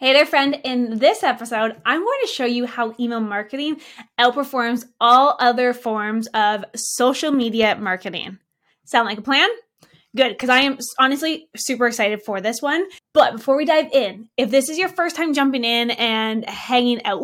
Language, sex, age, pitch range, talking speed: English, female, 20-39, 230-285 Hz, 180 wpm